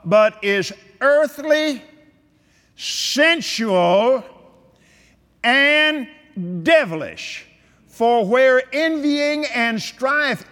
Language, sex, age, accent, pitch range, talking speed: English, male, 50-69, American, 185-290 Hz, 65 wpm